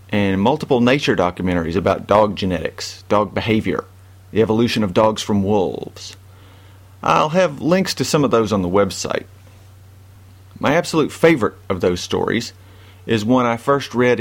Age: 40-59